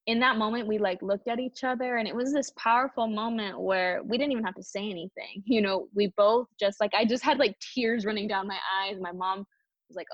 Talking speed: 250 wpm